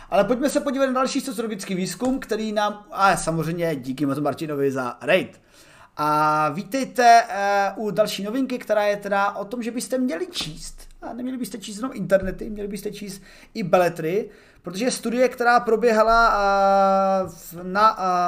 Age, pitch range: 30-49, 180-215 Hz